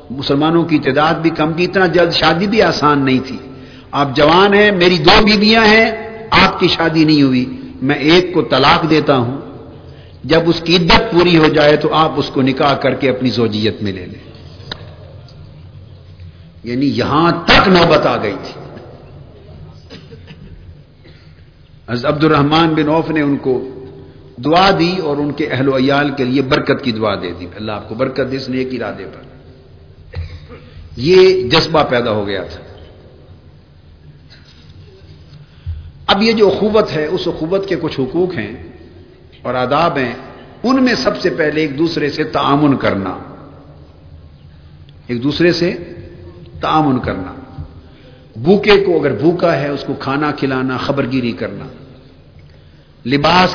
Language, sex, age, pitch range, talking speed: Urdu, male, 50-69, 105-160 Hz, 150 wpm